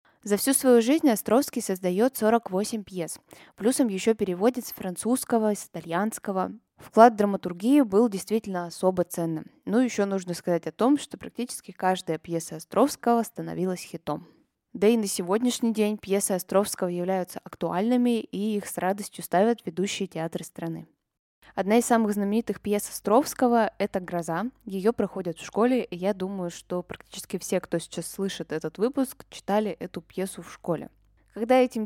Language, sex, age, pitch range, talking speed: Russian, female, 20-39, 185-225 Hz, 155 wpm